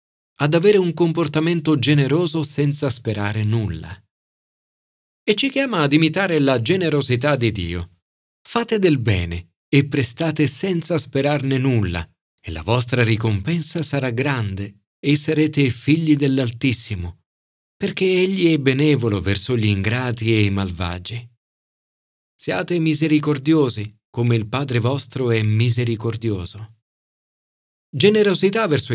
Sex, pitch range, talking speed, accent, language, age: male, 110-155 Hz, 115 wpm, native, Italian, 40-59